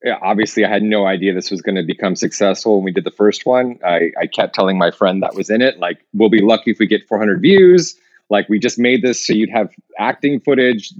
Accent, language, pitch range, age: American, English, 105-140 Hz, 30-49